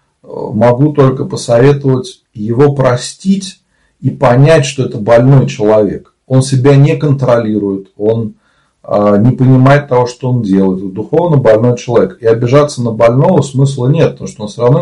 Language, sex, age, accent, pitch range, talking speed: Russian, male, 40-59, native, 105-140 Hz, 145 wpm